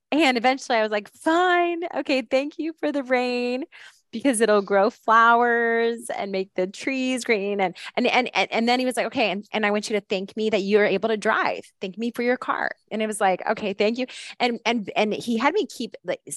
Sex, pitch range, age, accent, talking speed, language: female, 190-245 Hz, 20-39, American, 230 wpm, English